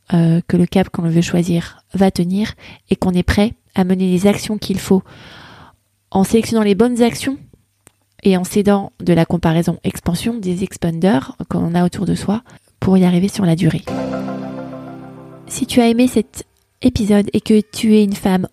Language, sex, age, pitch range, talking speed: French, female, 20-39, 175-210 Hz, 175 wpm